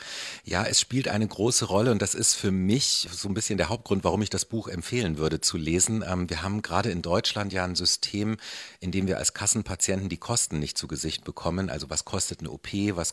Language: German